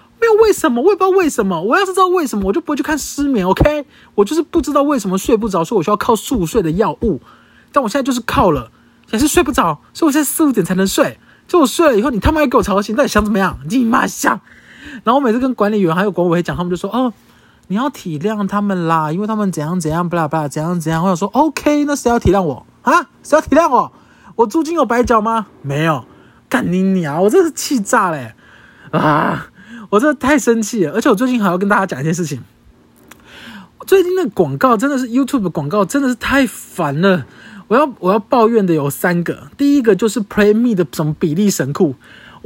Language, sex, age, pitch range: Chinese, male, 20-39, 190-295 Hz